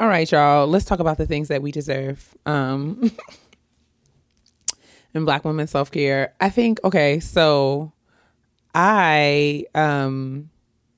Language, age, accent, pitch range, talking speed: English, 20-39, American, 135-155 Hz, 125 wpm